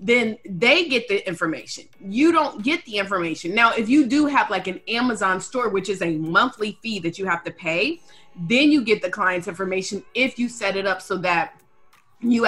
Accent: American